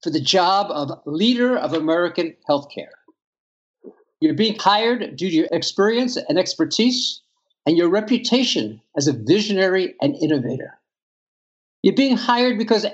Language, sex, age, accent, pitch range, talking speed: English, male, 50-69, American, 155-230 Hz, 135 wpm